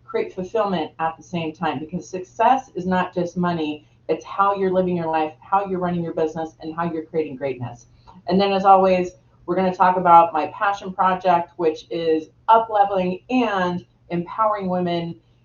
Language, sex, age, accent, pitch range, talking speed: English, female, 30-49, American, 160-200 Hz, 185 wpm